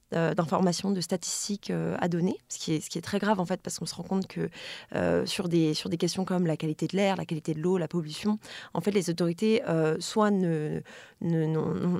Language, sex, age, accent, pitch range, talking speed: French, female, 20-39, French, 170-205 Hz, 245 wpm